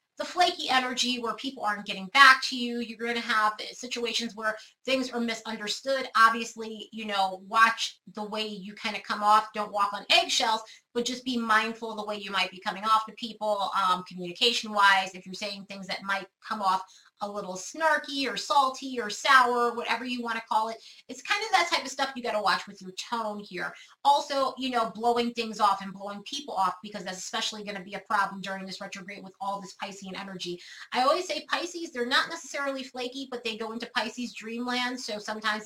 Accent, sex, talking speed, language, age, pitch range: American, female, 215 wpm, English, 30-49, 195-250 Hz